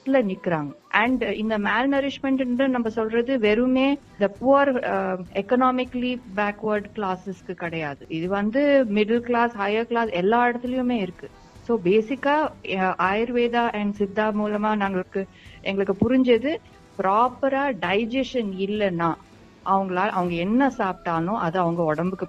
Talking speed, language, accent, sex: 110 wpm, Tamil, native, female